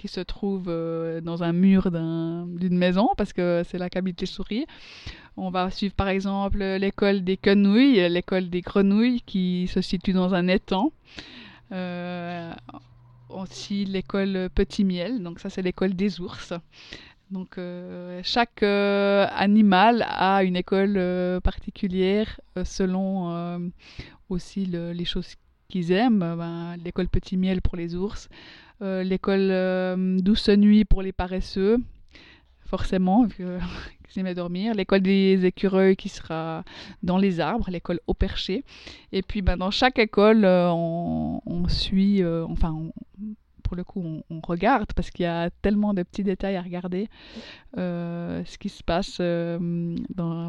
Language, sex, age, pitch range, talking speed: French, female, 20-39, 175-200 Hz, 150 wpm